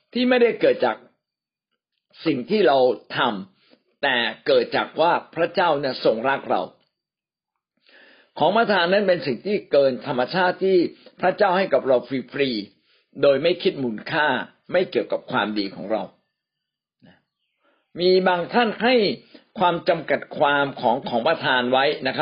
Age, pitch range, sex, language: 60-79, 140-210 Hz, male, Thai